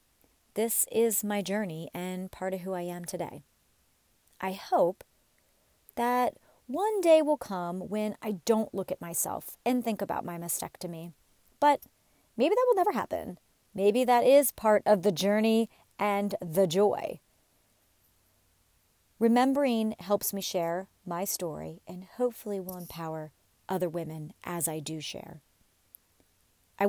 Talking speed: 140 wpm